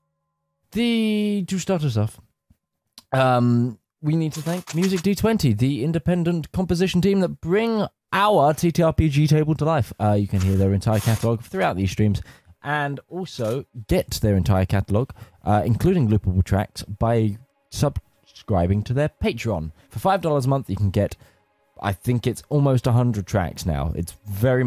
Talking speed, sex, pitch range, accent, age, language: 165 wpm, male, 100-150 Hz, British, 20-39, English